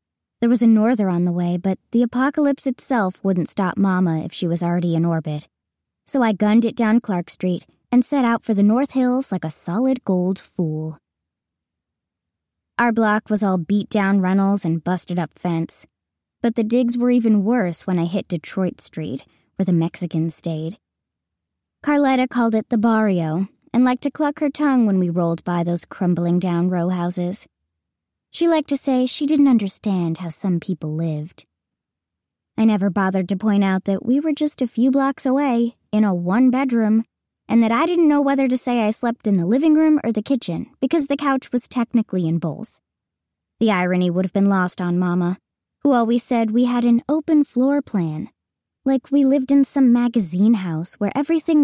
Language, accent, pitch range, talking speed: English, American, 175-250 Hz, 190 wpm